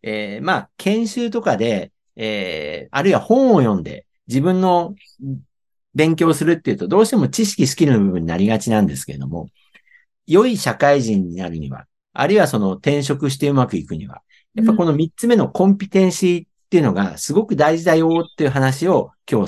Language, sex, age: Japanese, male, 50-69